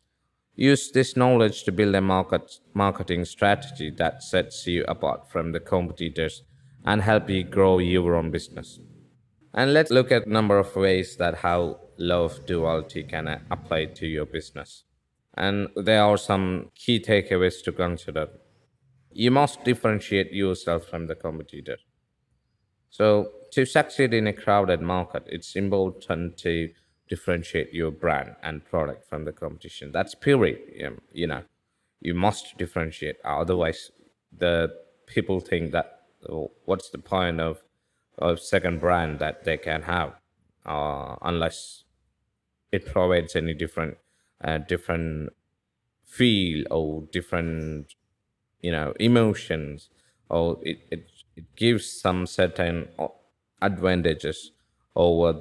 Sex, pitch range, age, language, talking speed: male, 80-105 Hz, 20-39, Malayalam, 135 wpm